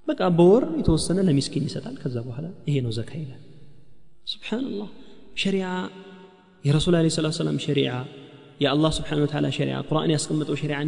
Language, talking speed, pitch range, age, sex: Amharic, 115 wpm, 140-175 Hz, 30-49, male